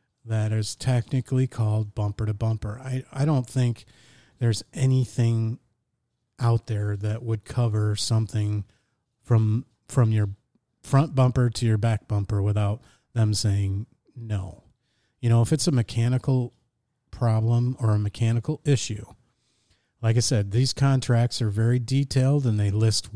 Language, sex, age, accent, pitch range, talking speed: English, male, 40-59, American, 105-125 Hz, 140 wpm